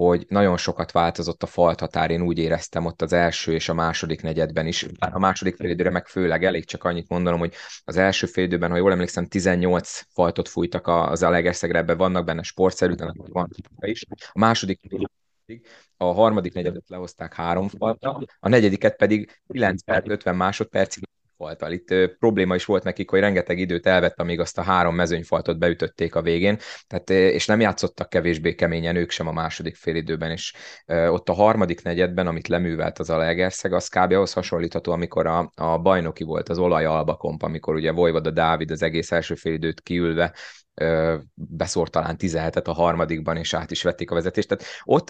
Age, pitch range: 20-39, 85-95 Hz